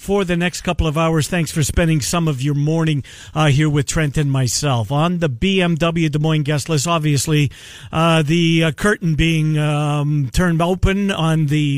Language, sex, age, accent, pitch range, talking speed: English, male, 50-69, American, 135-160 Hz, 190 wpm